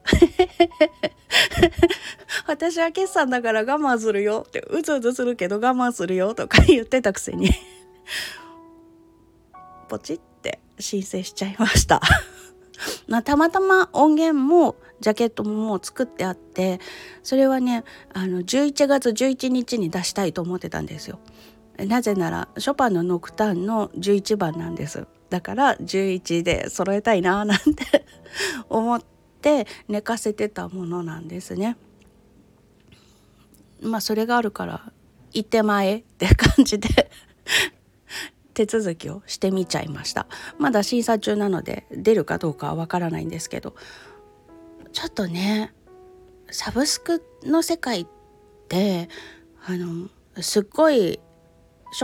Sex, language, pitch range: female, Japanese, 185-300 Hz